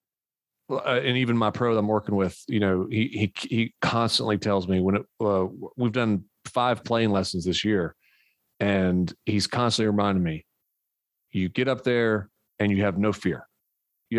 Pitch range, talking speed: 100-130 Hz, 175 wpm